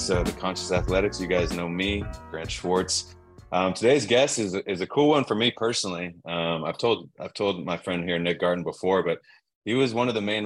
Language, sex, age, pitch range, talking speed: English, male, 20-39, 85-95 Hz, 230 wpm